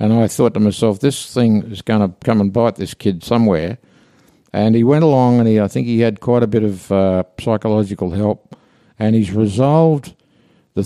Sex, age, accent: male, 50-69, Australian